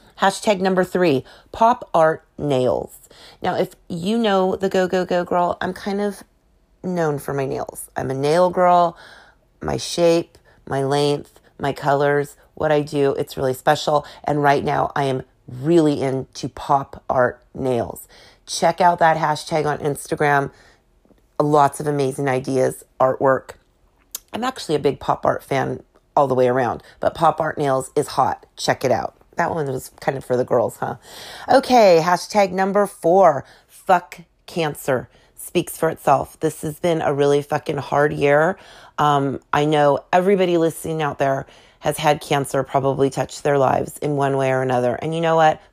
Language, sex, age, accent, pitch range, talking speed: English, female, 30-49, American, 135-170 Hz, 170 wpm